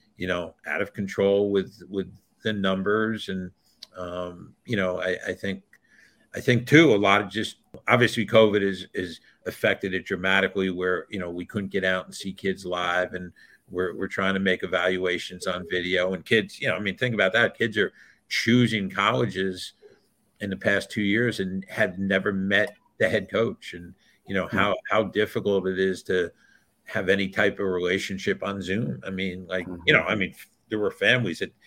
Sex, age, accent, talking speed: male, 50-69, American, 195 wpm